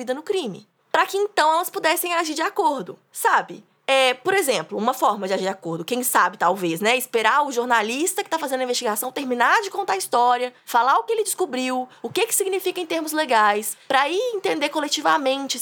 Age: 20-39